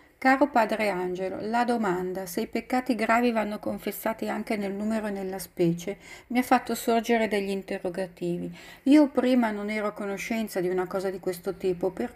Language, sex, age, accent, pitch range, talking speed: Italian, female, 40-59, native, 185-230 Hz, 180 wpm